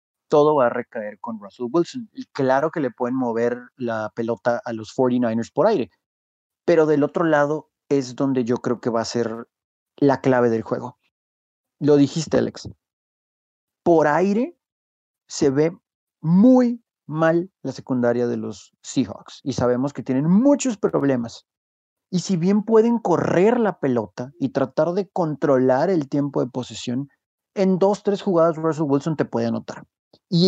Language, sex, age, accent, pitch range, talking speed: Spanish, male, 40-59, Mexican, 125-165 Hz, 160 wpm